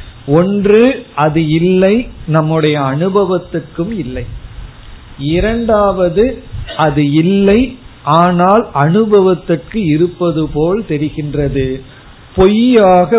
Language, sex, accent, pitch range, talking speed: Tamil, male, native, 140-190 Hz, 70 wpm